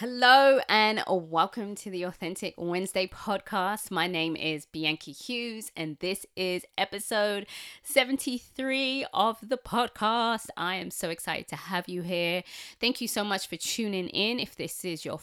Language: English